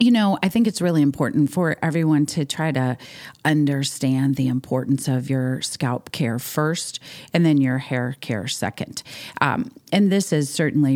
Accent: American